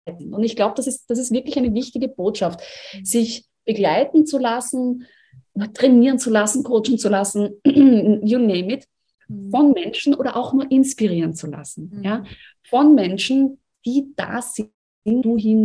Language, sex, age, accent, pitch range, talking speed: German, female, 30-49, German, 180-230 Hz, 155 wpm